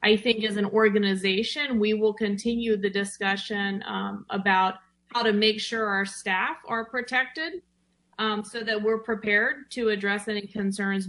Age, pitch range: 30-49, 195-225 Hz